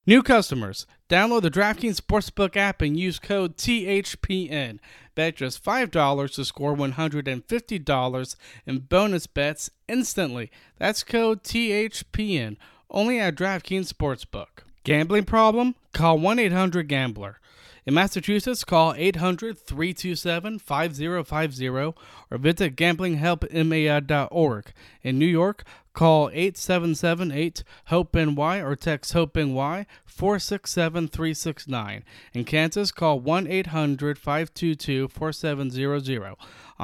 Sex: male